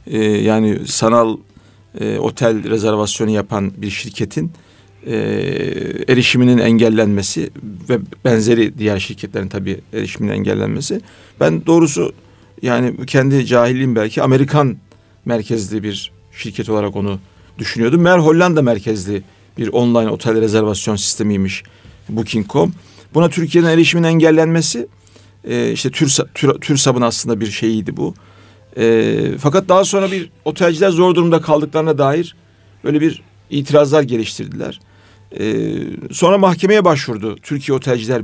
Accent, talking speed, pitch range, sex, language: native, 120 wpm, 105-155 Hz, male, Turkish